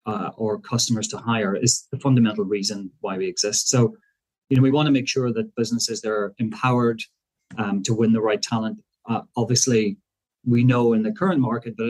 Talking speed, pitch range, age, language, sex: 195 wpm, 110-130 Hz, 30-49, English, male